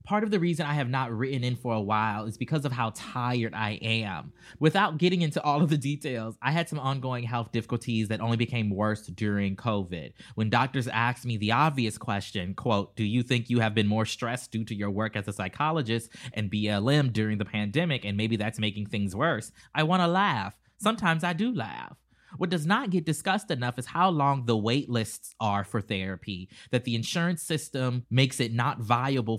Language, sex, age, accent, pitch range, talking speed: English, male, 20-39, American, 115-150 Hz, 210 wpm